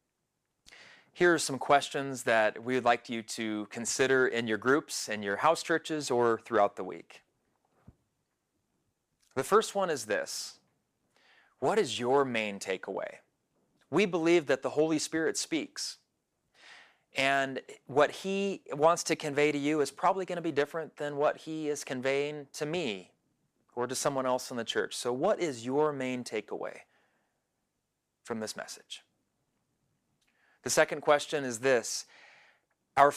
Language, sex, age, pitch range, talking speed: English, male, 30-49, 125-155 Hz, 150 wpm